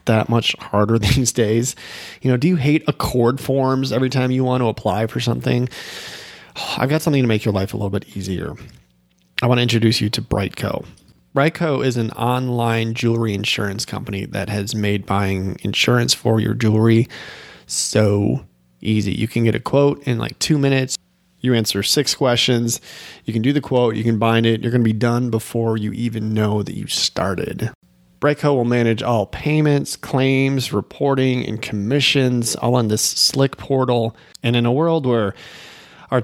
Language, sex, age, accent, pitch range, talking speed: English, male, 30-49, American, 110-130 Hz, 180 wpm